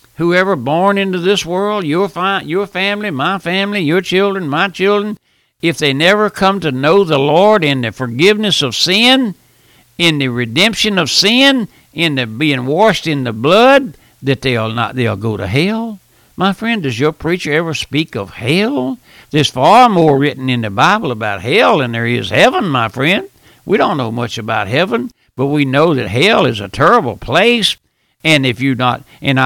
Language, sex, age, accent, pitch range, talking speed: English, male, 60-79, American, 125-185 Hz, 180 wpm